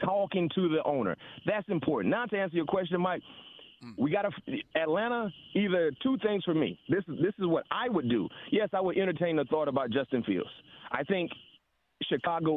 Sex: male